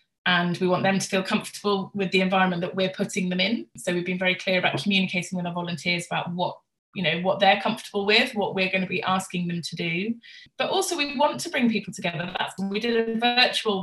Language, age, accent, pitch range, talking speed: English, 20-39, British, 175-215 Hz, 240 wpm